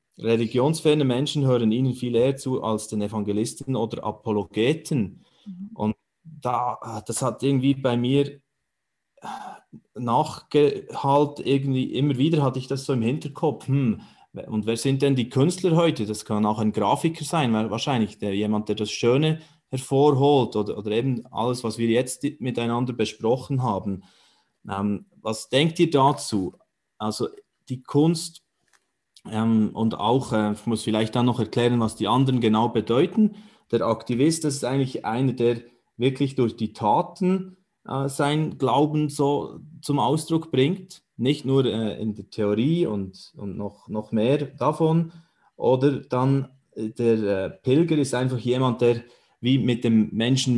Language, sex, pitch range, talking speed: German, male, 110-145 Hz, 140 wpm